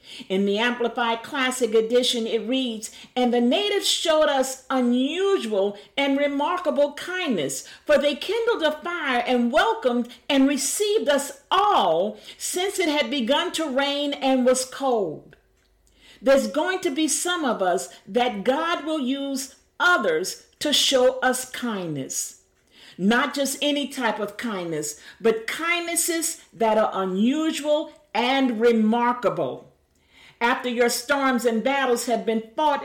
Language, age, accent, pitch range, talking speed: English, 50-69, American, 230-300 Hz, 135 wpm